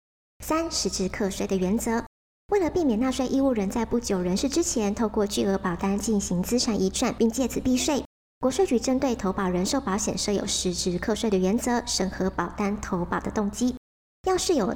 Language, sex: Chinese, male